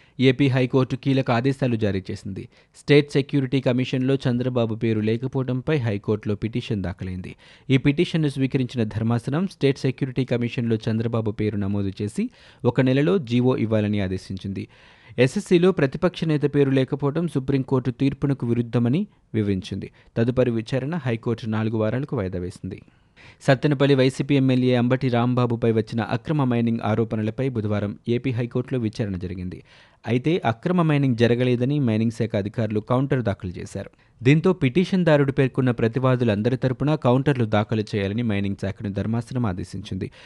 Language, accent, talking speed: Telugu, native, 125 wpm